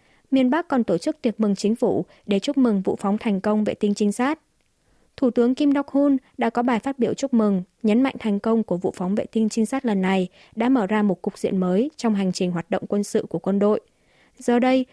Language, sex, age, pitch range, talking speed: Vietnamese, female, 20-39, 195-250 Hz, 255 wpm